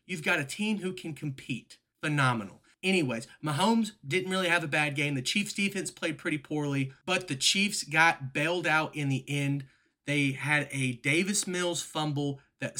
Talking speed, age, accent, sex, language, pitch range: 180 wpm, 30-49, American, male, English, 140-175 Hz